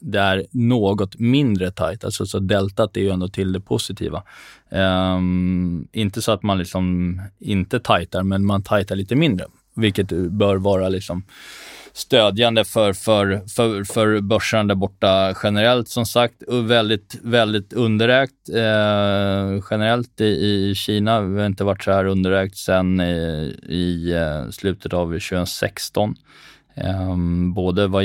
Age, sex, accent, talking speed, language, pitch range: 20-39, male, native, 135 wpm, Swedish, 95-110 Hz